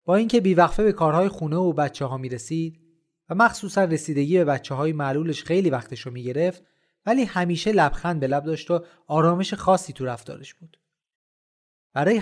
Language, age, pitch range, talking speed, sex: Persian, 30-49, 145-195 Hz, 160 wpm, male